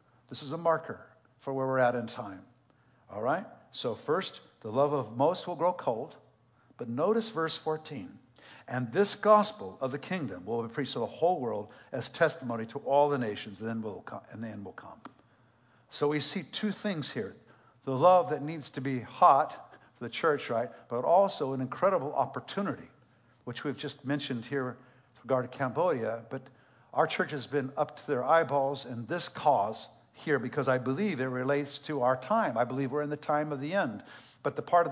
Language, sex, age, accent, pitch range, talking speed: English, male, 60-79, American, 125-160 Hz, 195 wpm